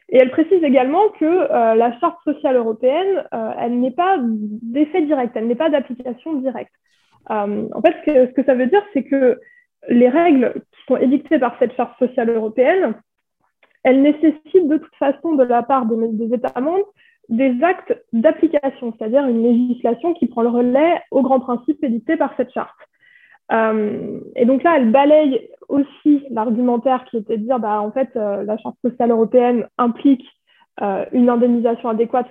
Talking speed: 180 wpm